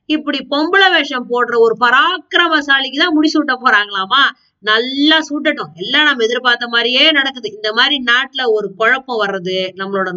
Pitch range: 210-290 Hz